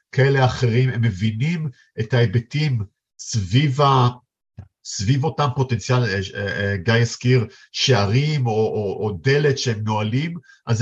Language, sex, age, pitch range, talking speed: Hebrew, male, 50-69, 115-140 Hz, 110 wpm